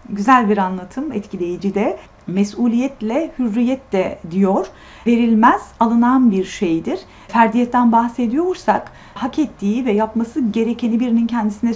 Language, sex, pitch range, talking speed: Turkish, female, 210-260 Hz, 110 wpm